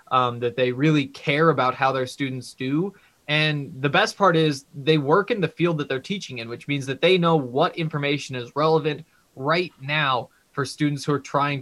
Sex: male